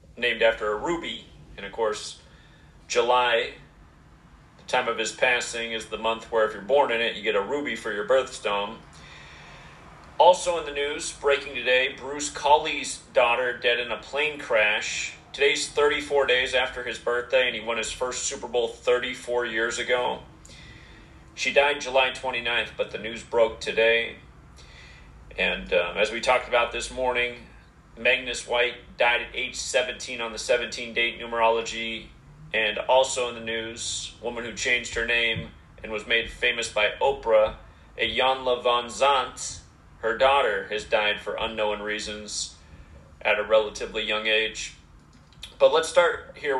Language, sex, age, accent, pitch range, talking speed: English, male, 40-59, American, 110-140 Hz, 155 wpm